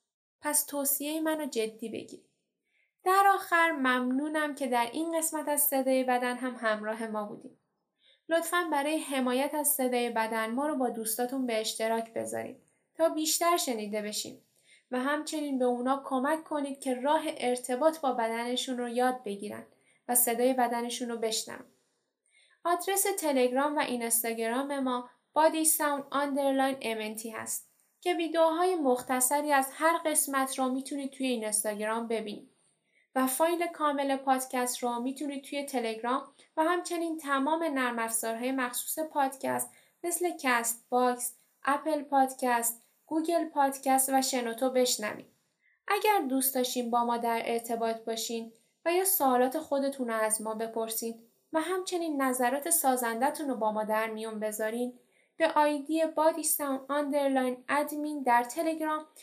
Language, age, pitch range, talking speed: Persian, 10-29, 240-300 Hz, 130 wpm